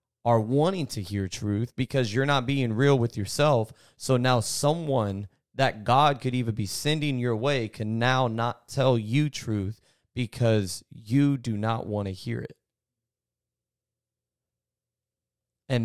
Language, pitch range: English, 110-130 Hz